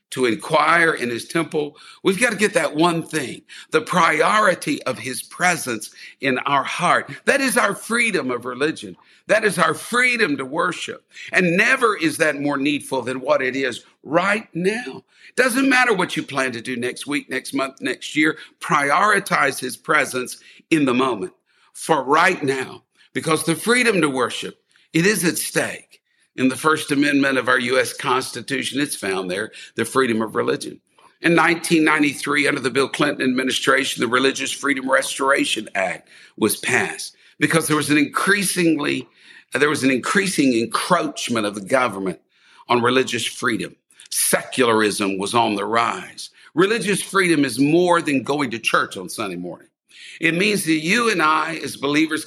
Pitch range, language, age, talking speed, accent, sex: 130-175 Hz, English, 60-79, 165 wpm, American, male